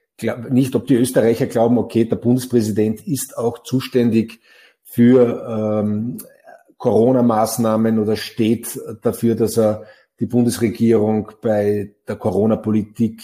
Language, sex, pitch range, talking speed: German, male, 105-120 Hz, 110 wpm